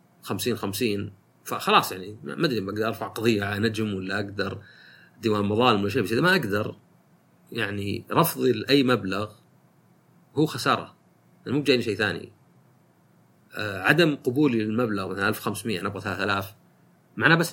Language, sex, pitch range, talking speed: Arabic, male, 105-130 Hz, 155 wpm